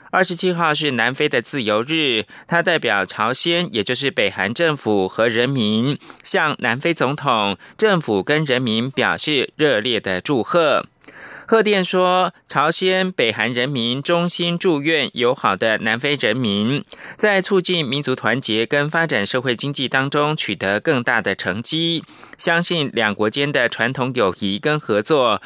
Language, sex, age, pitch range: French, male, 30-49, 120-170 Hz